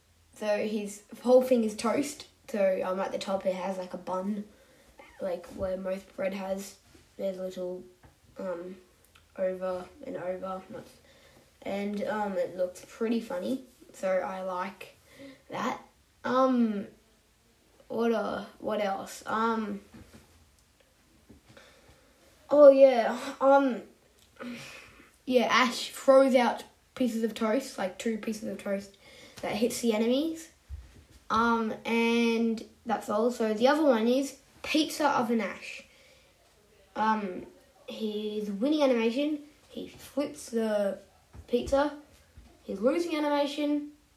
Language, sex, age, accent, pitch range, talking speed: English, female, 10-29, Australian, 195-270 Hz, 115 wpm